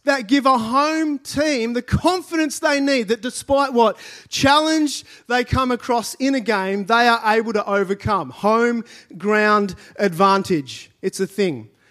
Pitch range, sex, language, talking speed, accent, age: 200-255 Hz, male, English, 150 wpm, Australian, 30-49